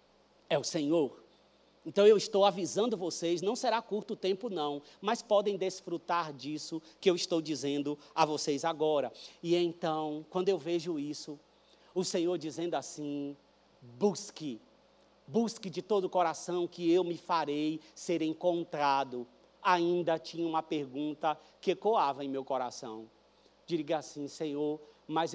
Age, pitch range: 40-59, 150-190 Hz